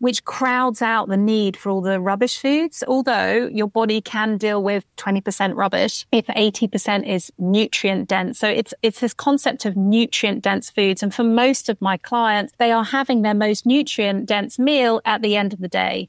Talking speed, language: 195 wpm, English